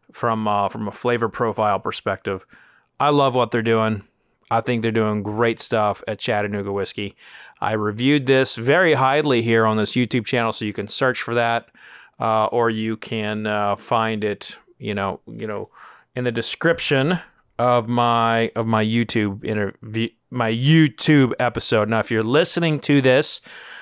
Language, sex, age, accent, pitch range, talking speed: English, male, 30-49, American, 115-150 Hz, 165 wpm